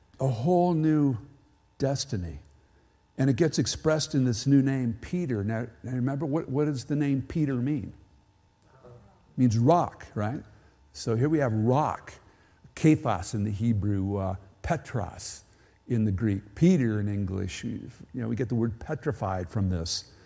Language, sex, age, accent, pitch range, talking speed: English, male, 50-69, American, 105-150 Hz, 155 wpm